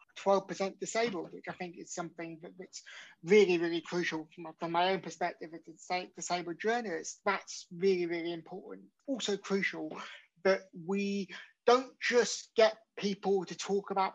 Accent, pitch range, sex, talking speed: British, 175-210 Hz, male, 145 wpm